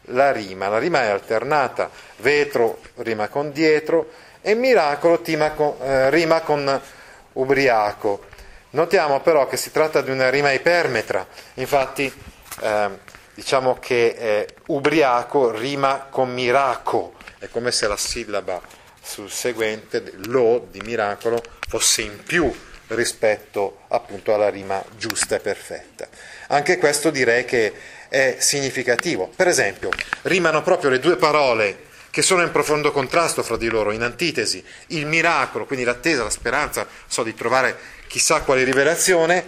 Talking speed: 135 wpm